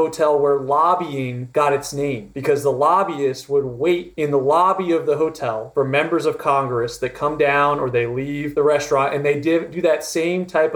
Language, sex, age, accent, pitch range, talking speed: English, male, 30-49, American, 140-180 Hz, 195 wpm